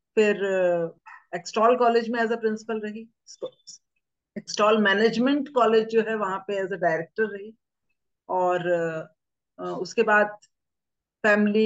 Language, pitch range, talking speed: English, 175-215 Hz, 110 wpm